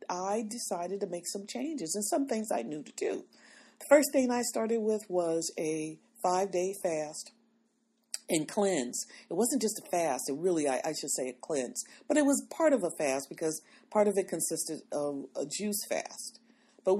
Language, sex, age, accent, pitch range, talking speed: English, female, 40-59, American, 175-240 Hz, 195 wpm